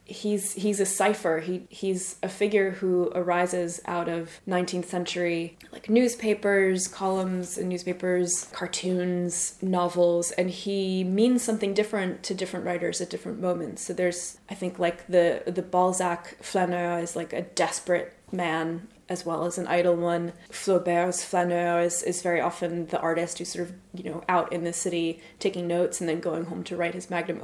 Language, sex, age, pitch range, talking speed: English, female, 20-39, 170-190 Hz, 175 wpm